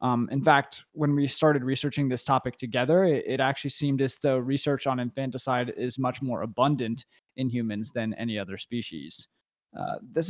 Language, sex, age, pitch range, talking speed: English, male, 20-39, 125-145 Hz, 175 wpm